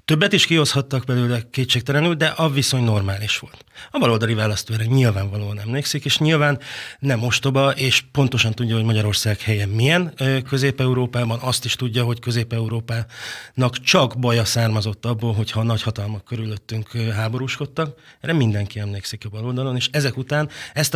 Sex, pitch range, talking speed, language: male, 110-140 Hz, 145 wpm, Hungarian